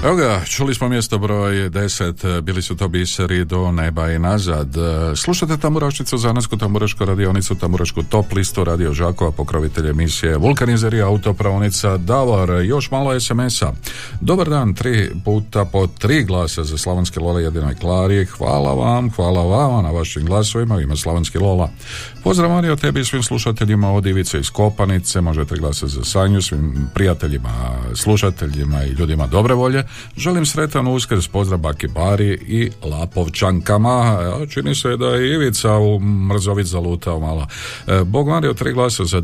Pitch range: 85-115 Hz